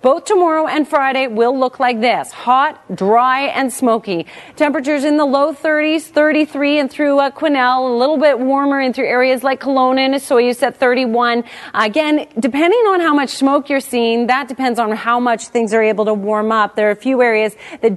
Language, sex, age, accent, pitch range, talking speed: English, female, 30-49, American, 235-300 Hz, 200 wpm